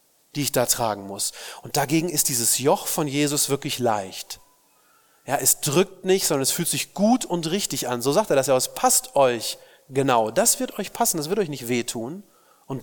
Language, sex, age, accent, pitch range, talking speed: German, male, 40-59, German, 130-180 Hz, 210 wpm